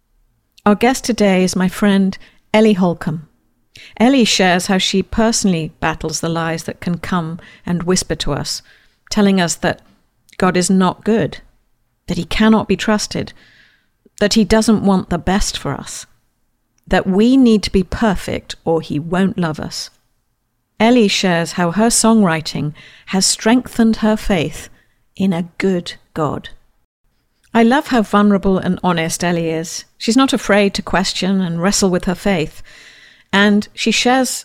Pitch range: 170-220 Hz